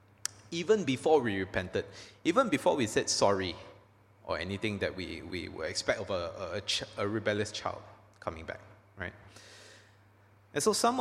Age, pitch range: 20-39, 100-120 Hz